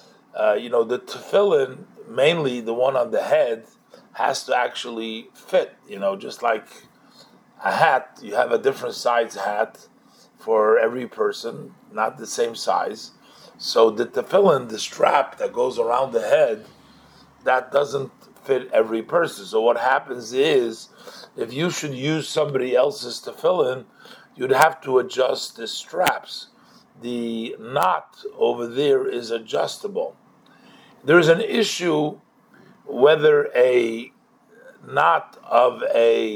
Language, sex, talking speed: English, male, 135 wpm